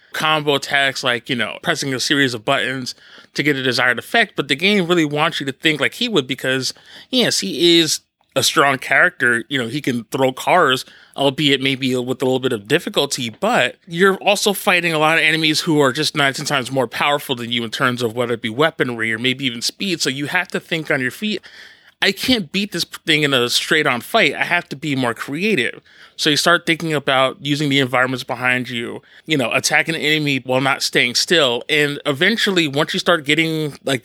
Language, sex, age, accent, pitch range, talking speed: English, male, 30-49, American, 130-165 Hz, 220 wpm